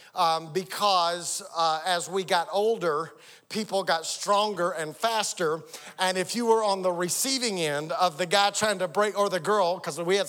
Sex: male